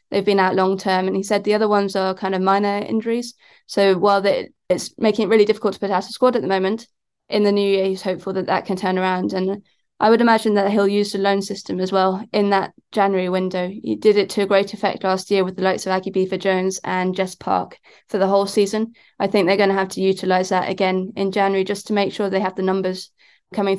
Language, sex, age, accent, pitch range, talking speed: English, female, 20-39, British, 190-205 Hz, 255 wpm